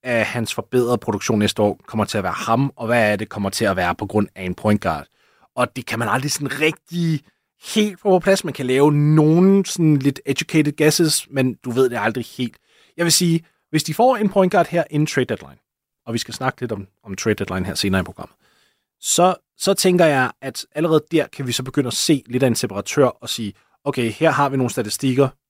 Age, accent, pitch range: 30-49, native, 110-150 Hz